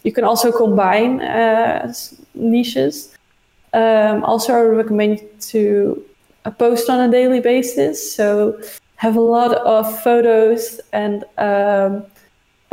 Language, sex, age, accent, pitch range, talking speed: English, female, 20-39, Dutch, 210-230 Hz, 120 wpm